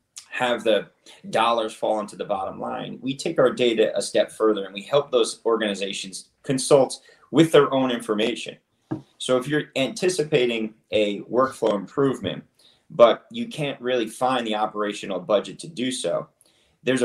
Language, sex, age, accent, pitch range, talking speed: English, male, 30-49, American, 110-145 Hz, 155 wpm